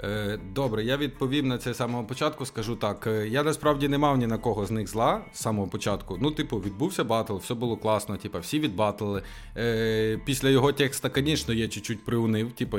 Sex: male